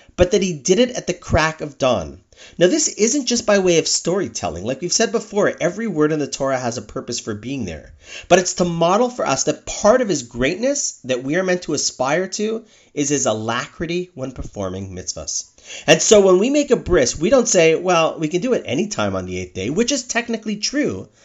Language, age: English, 30-49